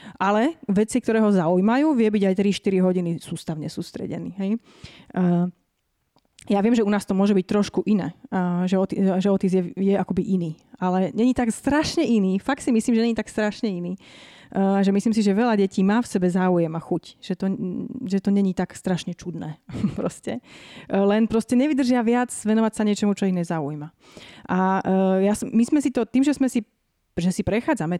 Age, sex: 30-49, female